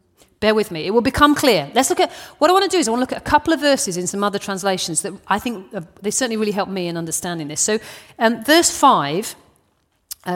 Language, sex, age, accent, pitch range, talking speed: English, female, 40-59, British, 175-245 Hz, 260 wpm